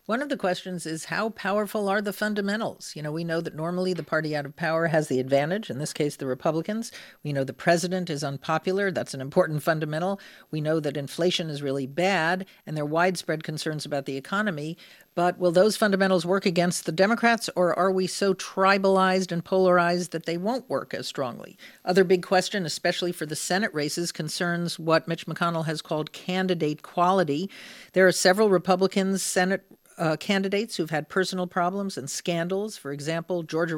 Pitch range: 160-200 Hz